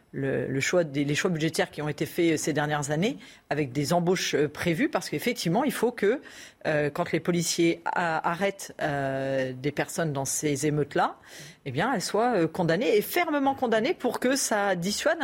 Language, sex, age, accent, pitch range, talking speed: French, female, 40-59, French, 165-210 Hz, 185 wpm